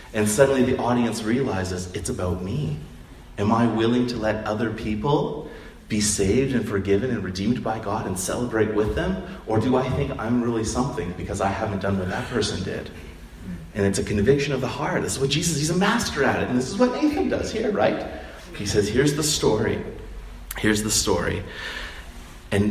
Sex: male